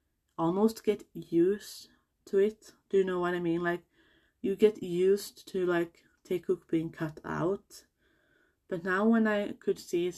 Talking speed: 165 wpm